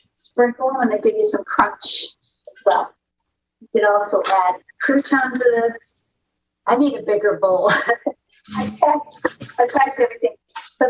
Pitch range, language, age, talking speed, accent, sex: 205-280 Hz, English, 50-69, 150 wpm, American, female